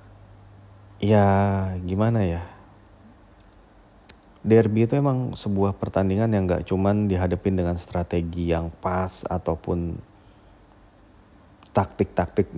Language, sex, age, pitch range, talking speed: Indonesian, male, 30-49, 95-105 Hz, 85 wpm